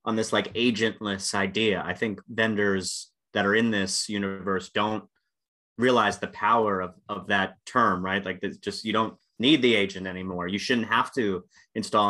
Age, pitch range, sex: 30-49, 95-105 Hz, male